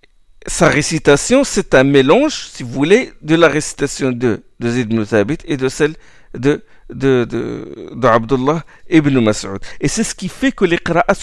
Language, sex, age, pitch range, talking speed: French, male, 50-69, 115-175 Hz, 170 wpm